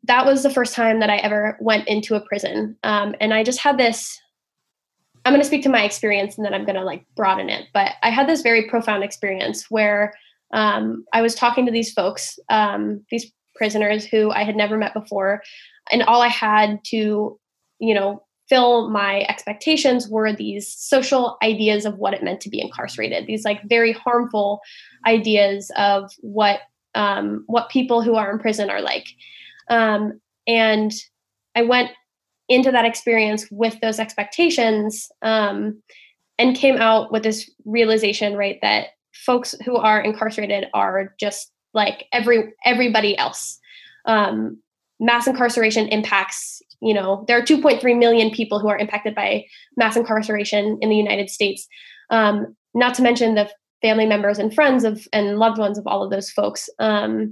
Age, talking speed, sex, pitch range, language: 10-29, 170 wpm, female, 205-235 Hz, English